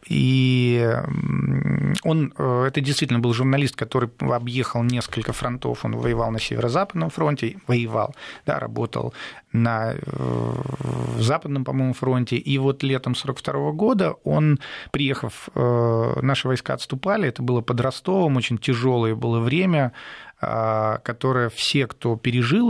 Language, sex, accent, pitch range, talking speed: Russian, male, native, 120-140 Hz, 115 wpm